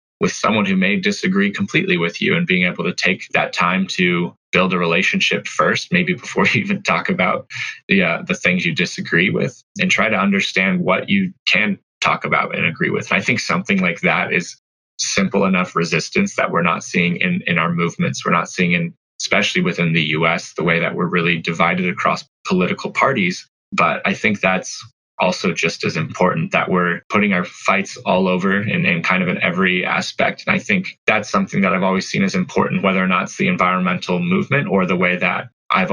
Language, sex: English, male